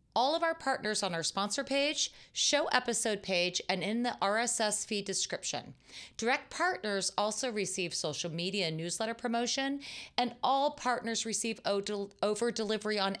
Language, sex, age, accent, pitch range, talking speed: English, female, 30-49, American, 175-255 Hz, 145 wpm